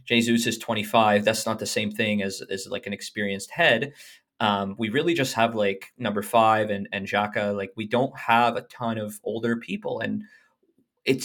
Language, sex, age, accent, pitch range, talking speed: English, male, 20-39, American, 115-130 Hz, 190 wpm